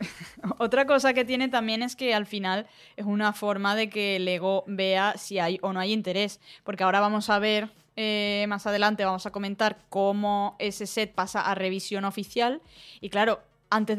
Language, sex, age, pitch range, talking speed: Spanish, female, 20-39, 190-220 Hz, 185 wpm